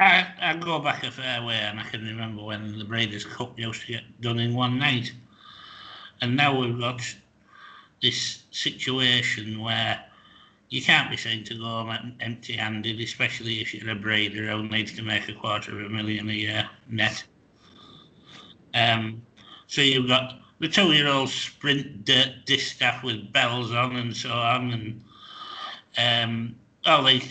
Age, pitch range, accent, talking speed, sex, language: 60-79, 110-125 Hz, British, 160 wpm, male, English